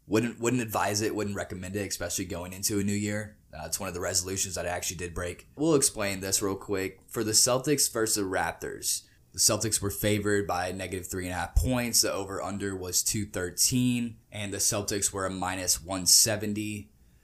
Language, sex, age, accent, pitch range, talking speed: English, male, 10-29, American, 90-105 Hz, 205 wpm